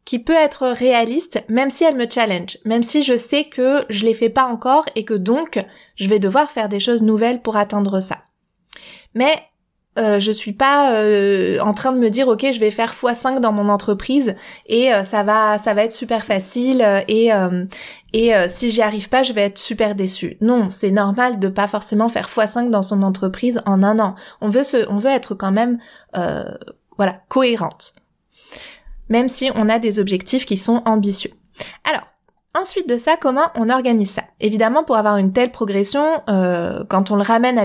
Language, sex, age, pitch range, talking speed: French, female, 20-39, 210-260 Hz, 205 wpm